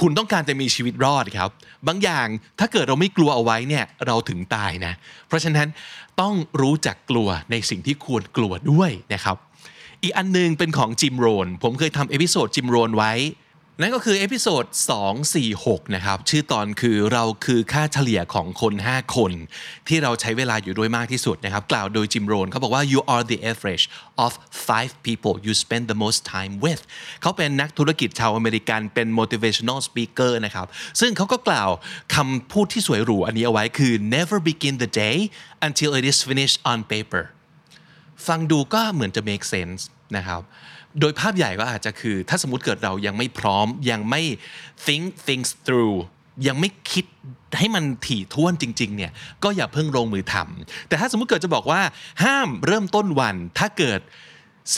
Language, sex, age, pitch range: Thai, male, 20-39, 110-160 Hz